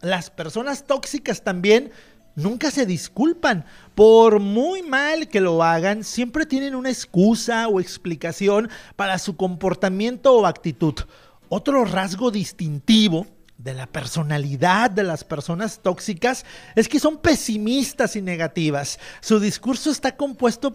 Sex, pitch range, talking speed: male, 175-245 Hz, 125 wpm